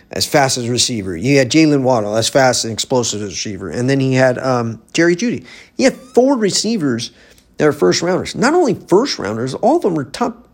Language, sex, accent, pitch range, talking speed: English, male, American, 130-200 Hz, 205 wpm